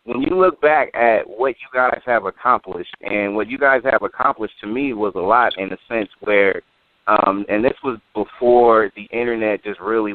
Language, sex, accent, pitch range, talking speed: English, male, American, 105-130 Hz, 200 wpm